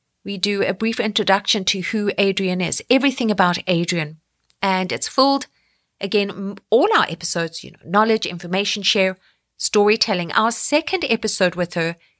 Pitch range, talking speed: 170-220 Hz, 150 wpm